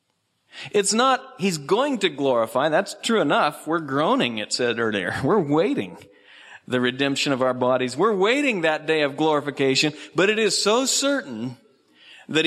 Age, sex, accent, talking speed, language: 50-69, male, American, 160 wpm, English